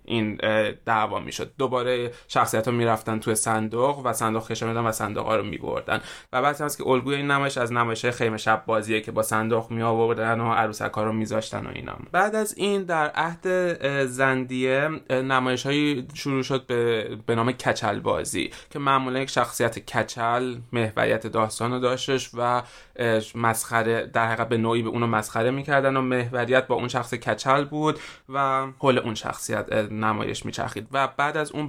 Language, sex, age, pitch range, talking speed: Persian, male, 20-39, 115-130 Hz, 175 wpm